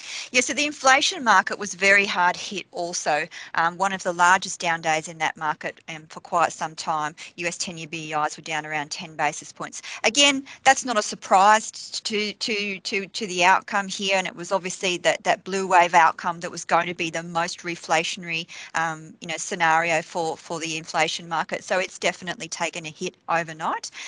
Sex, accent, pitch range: female, Australian, 165-195 Hz